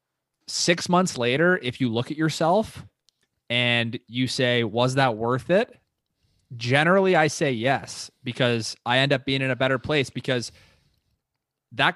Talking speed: 150 wpm